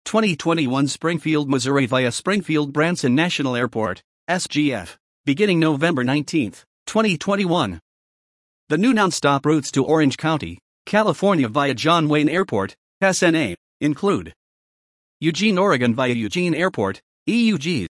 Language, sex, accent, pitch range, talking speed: English, male, American, 130-180 Hz, 110 wpm